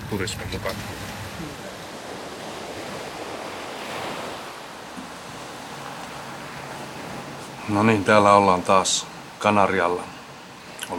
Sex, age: male, 30-49